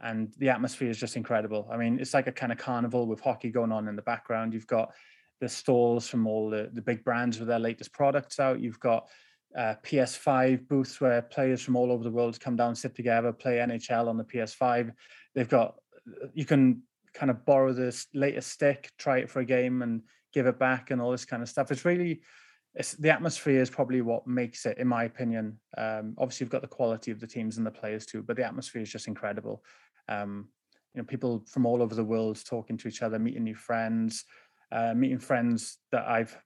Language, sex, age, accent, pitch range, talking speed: English, male, 20-39, British, 115-130 Hz, 220 wpm